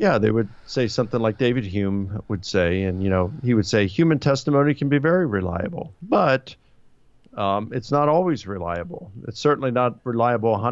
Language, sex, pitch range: English, male, 100-125 Hz